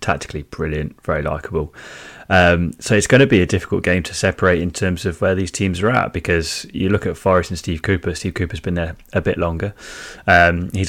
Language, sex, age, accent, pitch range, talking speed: English, male, 20-39, British, 85-95 Hz, 220 wpm